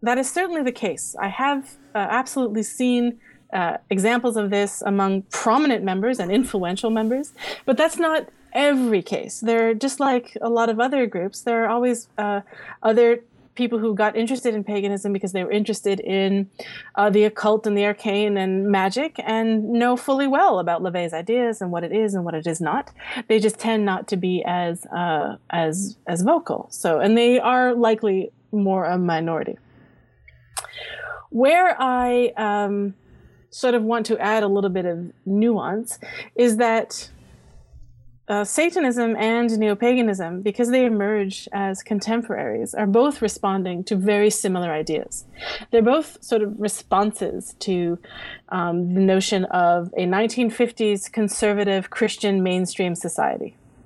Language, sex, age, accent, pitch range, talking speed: English, female, 30-49, American, 195-240 Hz, 155 wpm